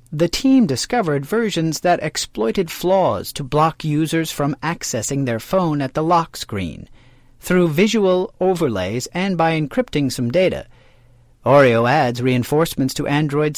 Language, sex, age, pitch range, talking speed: English, male, 40-59, 120-170 Hz, 135 wpm